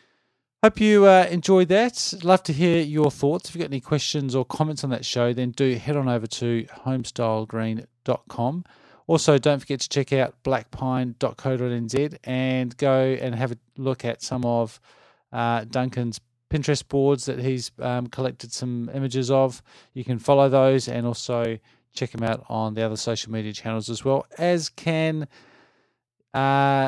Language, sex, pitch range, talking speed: English, male, 120-145 Hz, 165 wpm